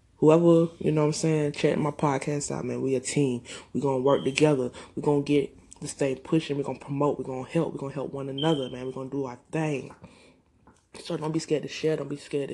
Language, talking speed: English, 270 wpm